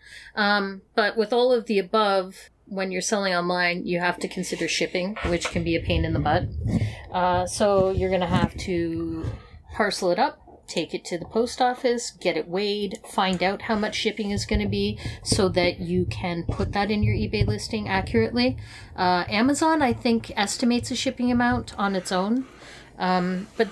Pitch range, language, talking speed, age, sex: 175-225 Hz, English, 190 wpm, 30-49, female